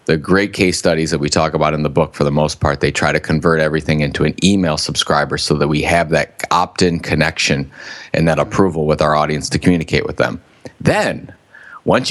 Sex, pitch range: male, 80-95 Hz